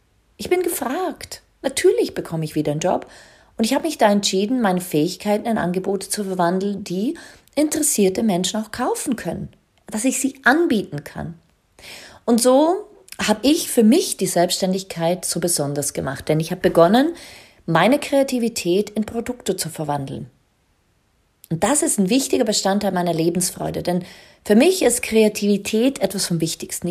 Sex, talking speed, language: female, 155 wpm, German